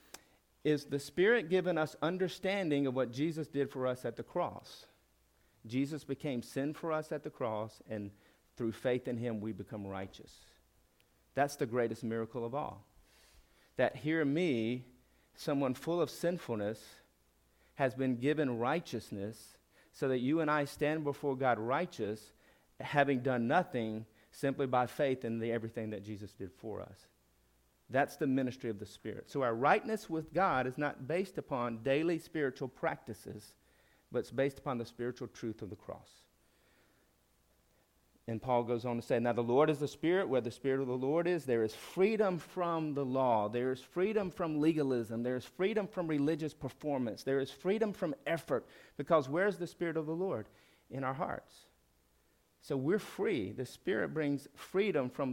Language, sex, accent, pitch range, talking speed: English, male, American, 115-155 Hz, 170 wpm